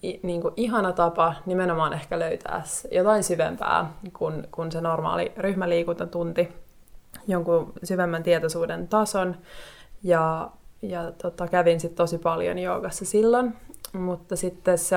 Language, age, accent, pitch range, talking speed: Finnish, 20-39, native, 165-190 Hz, 120 wpm